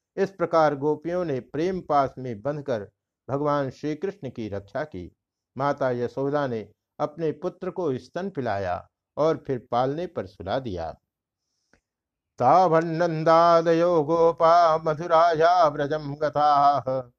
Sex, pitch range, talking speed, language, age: male, 120-160 Hz, 110 wpm, Hindi, 60-79